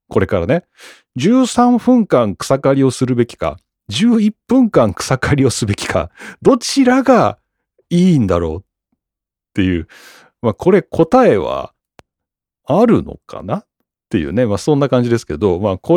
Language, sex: Japanese, male